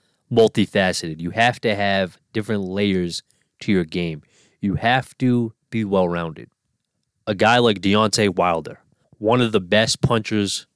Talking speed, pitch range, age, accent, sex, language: 140 wpm, 90-115 Hz, 20-39, American, male, English